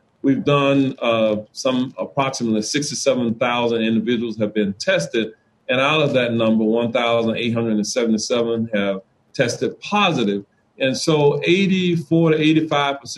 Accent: American